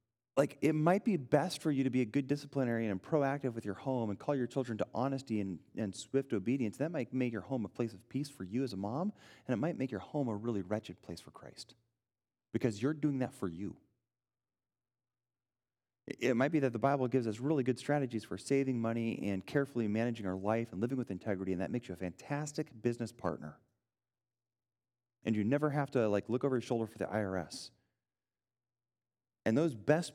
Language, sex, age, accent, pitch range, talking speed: English, male, 30-49, American, 110-140 Hz, 210 wpm